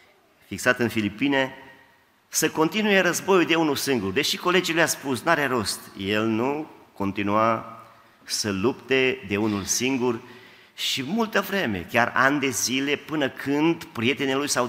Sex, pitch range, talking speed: male, 105-135 Hz, 145 wpm